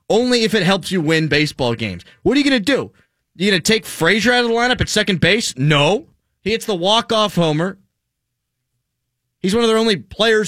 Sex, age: male, 30-49